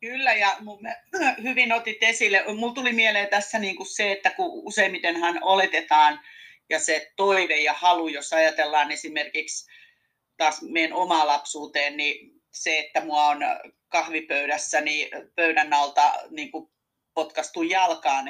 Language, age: Finnish, 40-59